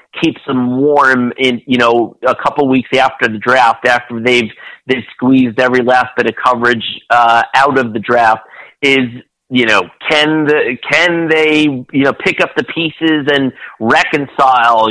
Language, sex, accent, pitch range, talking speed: English, male, American, 120-135 Hz, 165 wpm